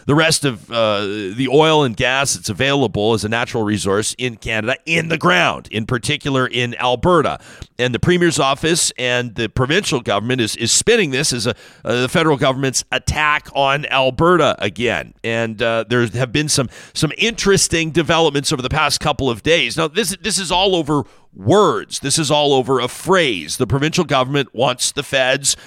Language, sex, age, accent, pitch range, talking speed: English, male, 40-59, American, 125-165 Hz, 185 wpm